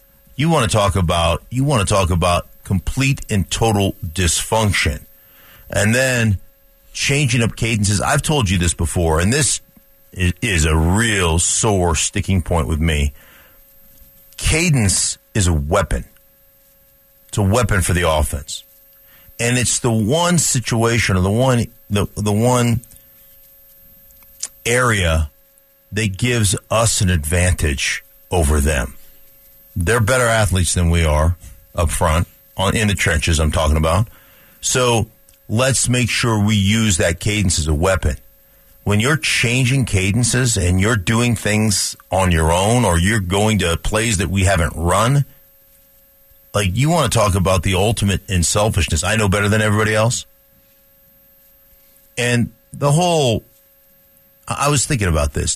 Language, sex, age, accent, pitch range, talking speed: English, male, 50-69, American, 90-115 Hz, 145 wpm